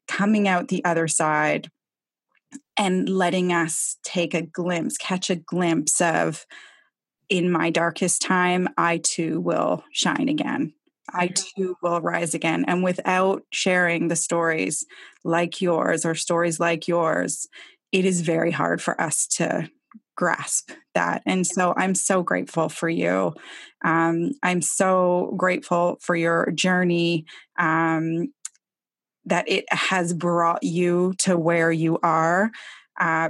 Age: 20-39